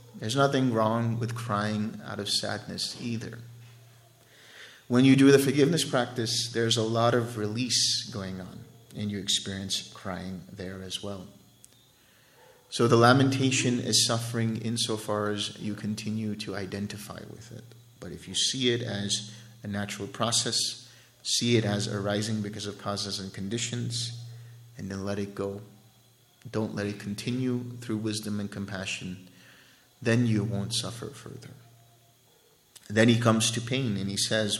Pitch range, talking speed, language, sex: 105-120 Hz, 150 wpm, English, male